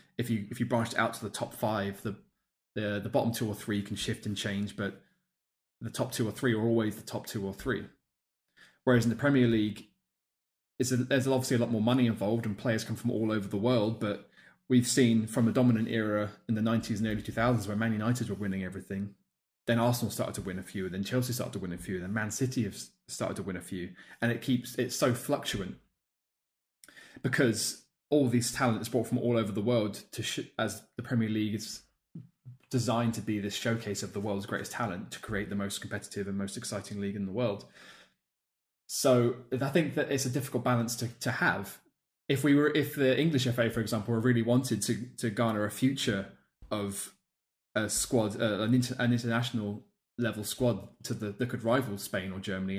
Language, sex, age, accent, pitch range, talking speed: English, male, 20-39, British, 100-125 Hz, 215 wpm